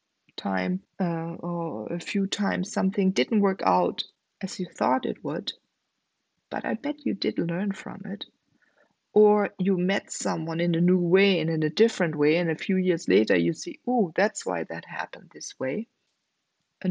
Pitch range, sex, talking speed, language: 170-210 Hz, female, 180 wpm, English